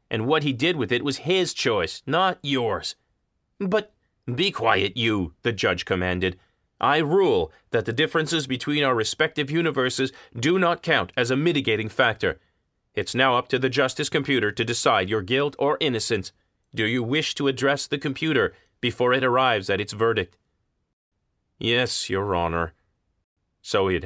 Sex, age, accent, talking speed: male, 30-49, American, 160 wpm